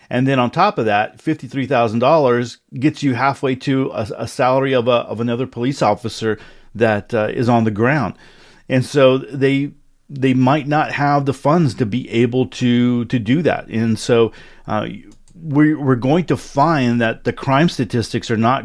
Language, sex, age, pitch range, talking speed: English, male, 40-59, 115-135 Hz, 185 wpm